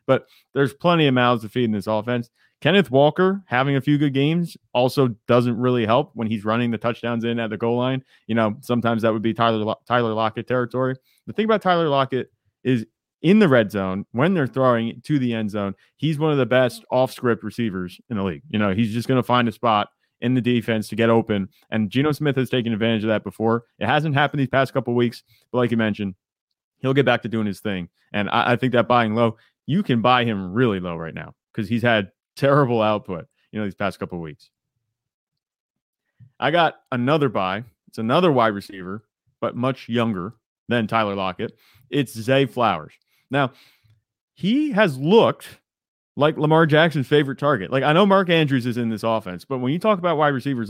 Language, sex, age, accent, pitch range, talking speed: English, male, 20-39, American, 110-135 Hz, 210 wpm